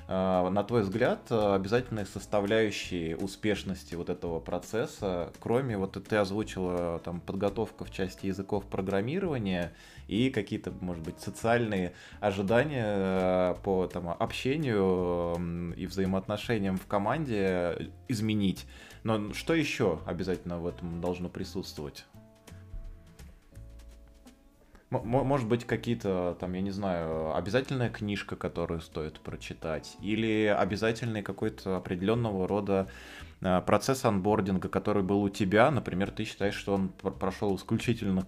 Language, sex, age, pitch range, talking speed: Russian, male, 20-39, 85-105 Hz, 115 wpm